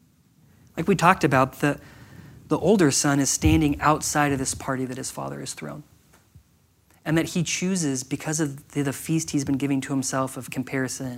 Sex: male